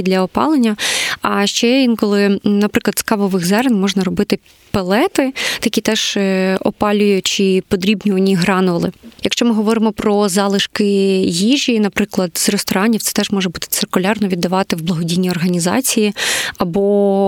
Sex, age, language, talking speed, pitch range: female, 20-39, Ukrainian, 125 wpm, 190-220 Hz